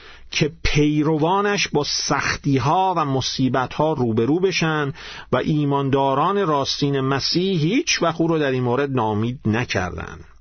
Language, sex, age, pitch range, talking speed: Persian, male, 50-69, 130-170 Hz, 125 wpm